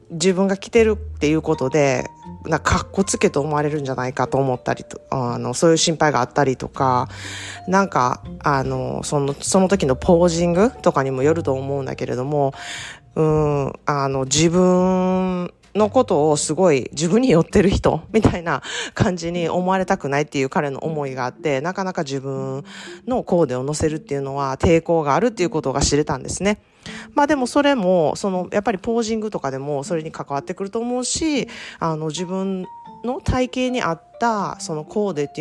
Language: Japanese